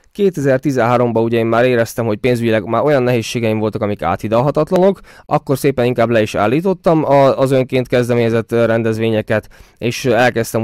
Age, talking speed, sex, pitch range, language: 20-39, 135 wpm, male, 110-140 Hz, Hungarian